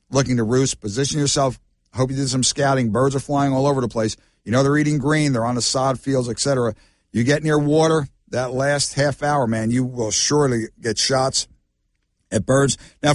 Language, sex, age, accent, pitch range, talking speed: English, male, 50-69, American, 125-160 Hz, 205 wpm